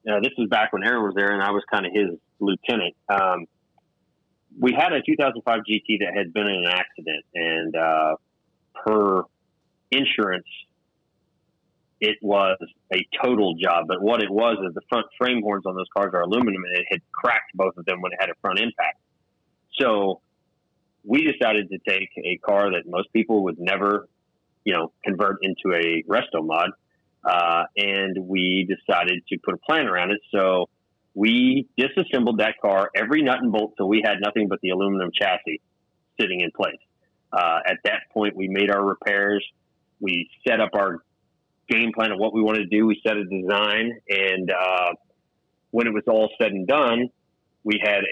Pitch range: 95-105 Hz